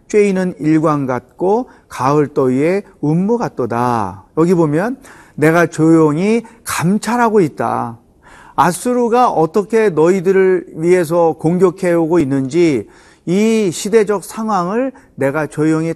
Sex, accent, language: male, native, Korean